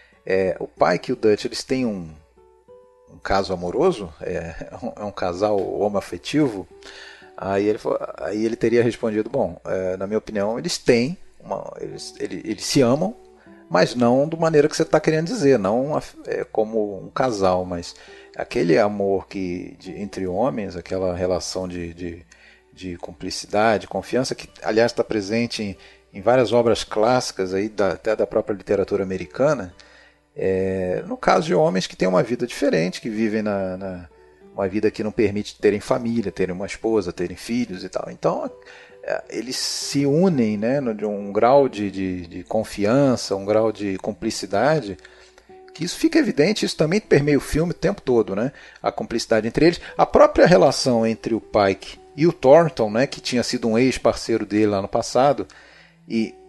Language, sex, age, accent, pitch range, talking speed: Portuguese, male, 40-59, Brazilian, 95-130 Hz, 175 wpm